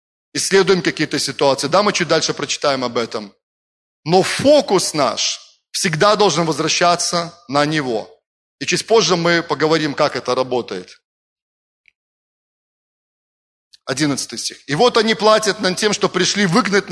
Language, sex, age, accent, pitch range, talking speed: Russian, male, 30-49, native, 145-190 Hz, 130 wpm